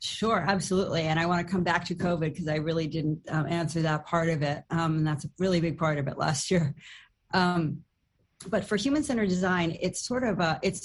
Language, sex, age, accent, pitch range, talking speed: English, female, 40-59, American, 155-185 Hz, 230 wpm